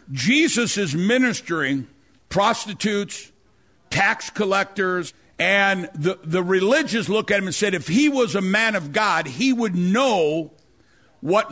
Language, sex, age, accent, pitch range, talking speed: English, male, 60-79, American, 180-245 Hz, 135 wpm